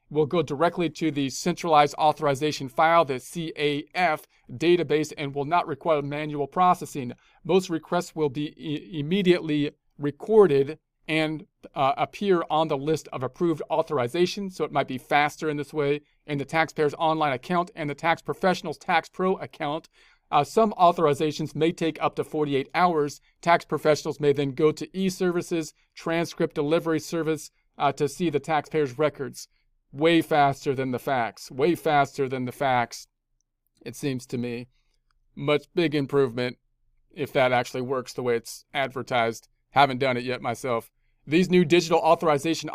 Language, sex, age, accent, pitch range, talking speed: English, male, 40-59, American, 140-165 Hz, 155 wpm